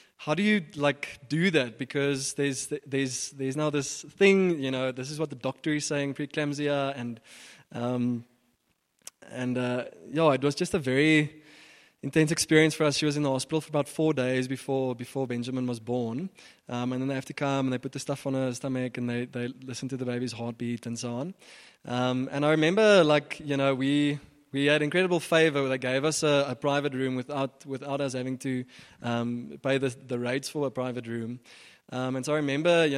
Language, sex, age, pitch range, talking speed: English, male, 20-39, 125-150 Hz, 210 wpm